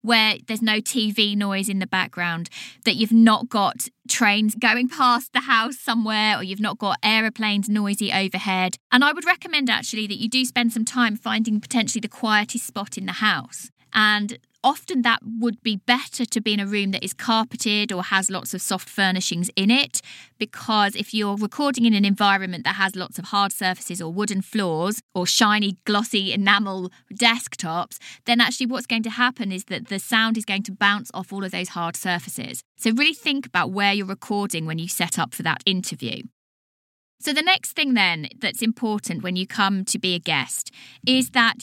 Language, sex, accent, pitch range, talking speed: English, female, British, 190-240 Hz, 195 wpm